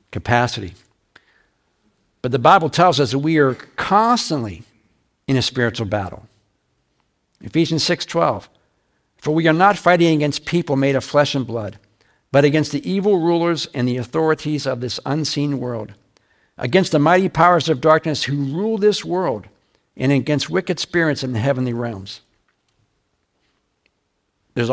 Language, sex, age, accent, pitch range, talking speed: English, male, 60-79, American, 120-165 Hz, 145 wpm